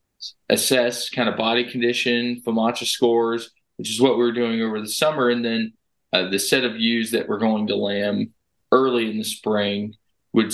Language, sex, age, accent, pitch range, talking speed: English, male, 20-39, American, 110-120 Hz, 190 wpm